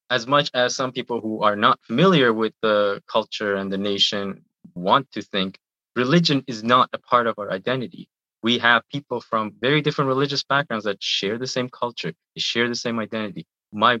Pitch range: 100-130 Hz